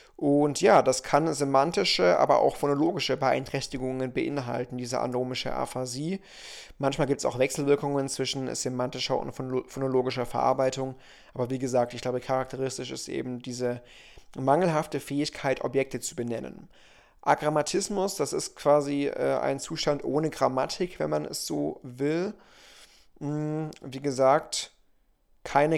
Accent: German